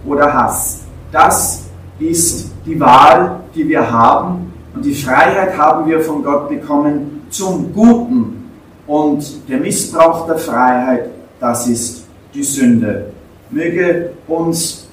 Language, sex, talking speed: English, male, 120 wpm